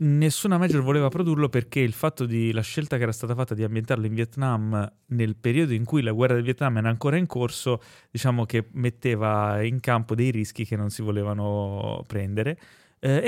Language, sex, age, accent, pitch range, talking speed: Italian, male, 30-49, native, 110-130 Hz, 195 wpm